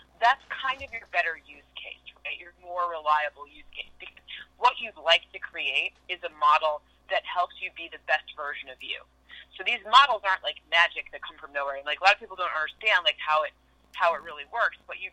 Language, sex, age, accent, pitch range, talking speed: English, female, 30-49, American, 155-200 Hz, 230 wpm